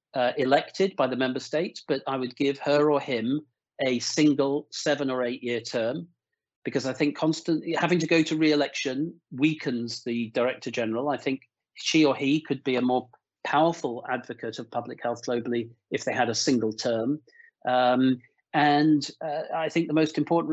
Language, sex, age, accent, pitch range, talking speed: English, male, 40-59, British, 125-160 Hz, 180 wpm